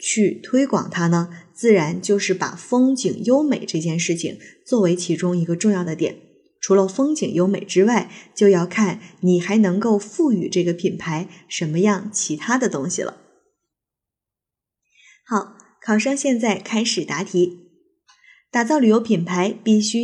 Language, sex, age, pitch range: Chinese, female, 20-39, 185-245 Hz